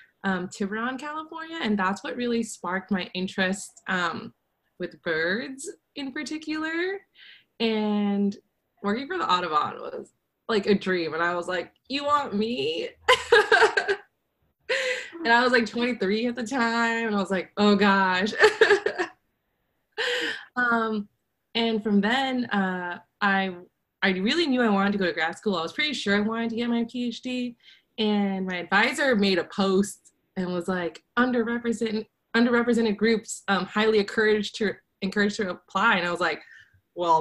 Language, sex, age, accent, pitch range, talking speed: English, female, 20-39, American, 195-255 Hz, 155 wpm